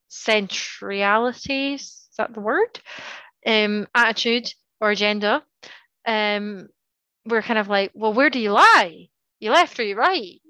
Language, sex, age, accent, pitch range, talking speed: English, female, 20-39, British, 205-250 Hz, 135 wpm